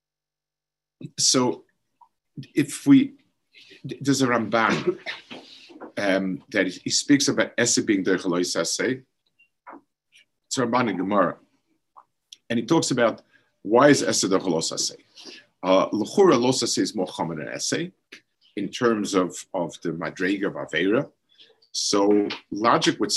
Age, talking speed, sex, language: 50-69, 110 wpm, male, English